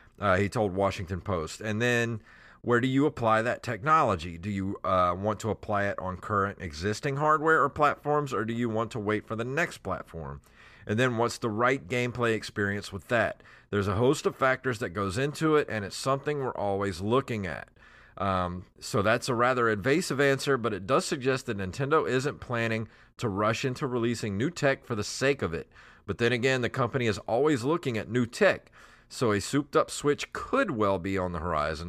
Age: 40-59